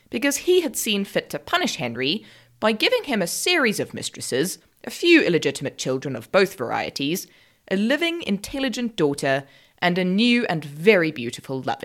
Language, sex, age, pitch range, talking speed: English, female, 20-39, 150-250 Hz, 165 wpm